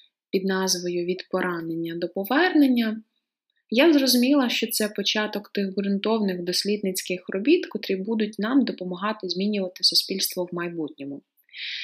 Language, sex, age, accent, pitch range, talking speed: Ukrainian, female, 20-39, native, 185-240 Hz, 115 wpm